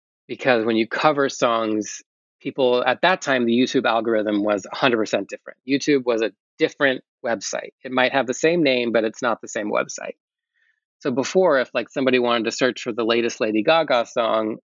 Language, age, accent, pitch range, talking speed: English, 30-49, American, 110-135 Hz, 190 wpm